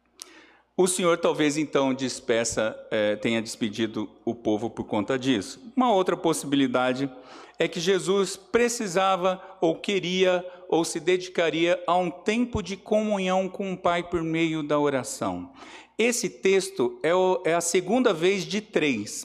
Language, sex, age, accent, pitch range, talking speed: Portuguese, male, 50-69, Brazilian, 160-220 Hz, 145 wpm